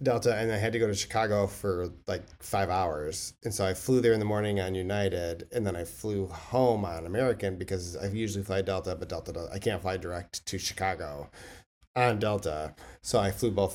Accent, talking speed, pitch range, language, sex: American, 210 wpm, 95-120 Hz, English, male